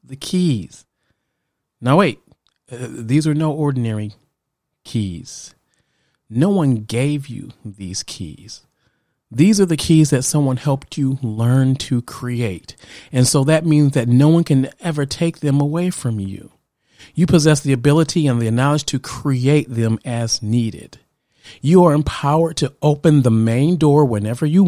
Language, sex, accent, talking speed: English, male, American, 155 wpm